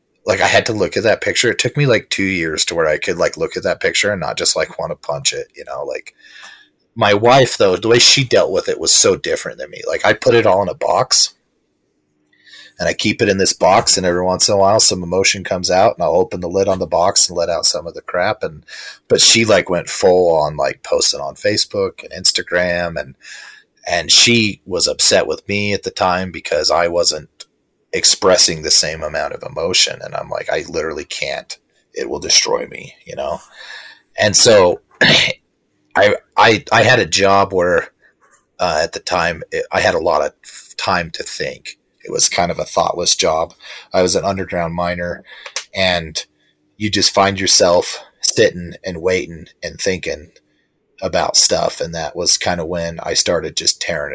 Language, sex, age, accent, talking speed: English, male, 30-49, American, 205 wpm